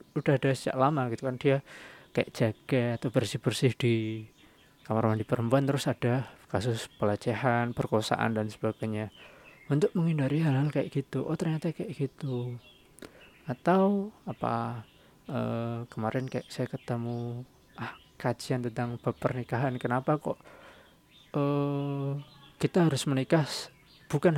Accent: native